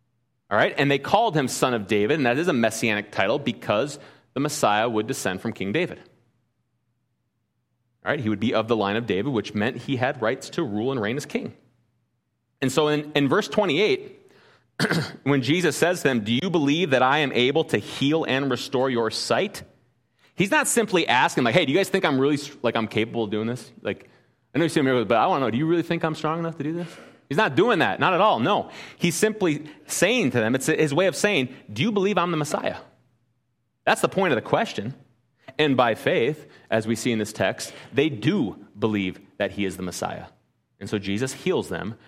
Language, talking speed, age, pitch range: English, 225 wpm, 30-49, 115-150 Hz